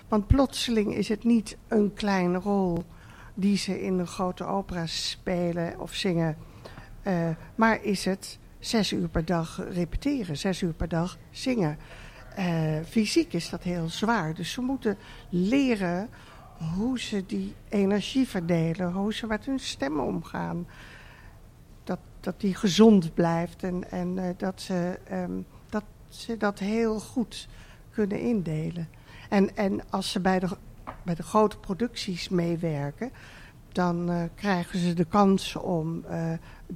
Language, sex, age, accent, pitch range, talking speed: Dutch, female, 50-69, Dutch, 170-210 Hz, 140 wpm